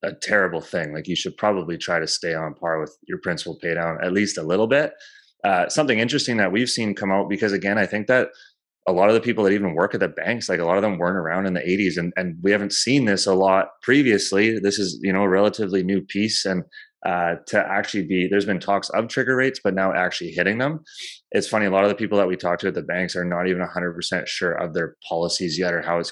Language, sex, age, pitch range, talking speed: English, male, 30-49, 90-105 Hz, 265 wpm